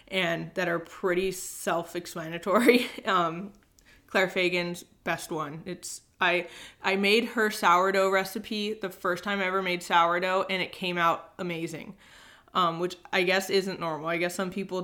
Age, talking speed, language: 20-39, 160 wpm, English